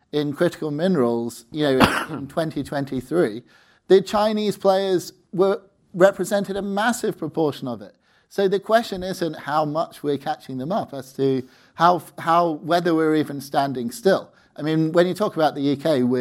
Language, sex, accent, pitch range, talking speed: English, male, British, 145-200 Hz, 165 wpm